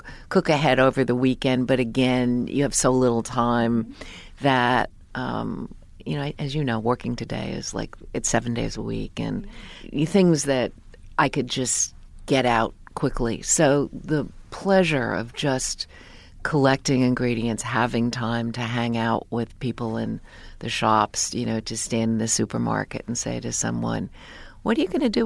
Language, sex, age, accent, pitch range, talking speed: English, female, 50-69, American, 110-135 Hz, 170 wpm